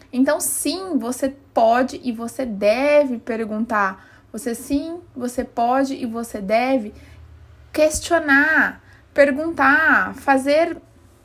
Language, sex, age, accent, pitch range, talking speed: Portuguese, female, 20-39, Brazilian, 235-295 Hz, 95 wpm